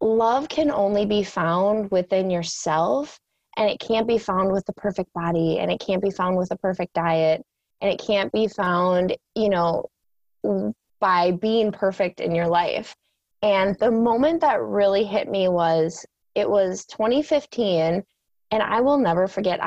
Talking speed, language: 165 wpm, English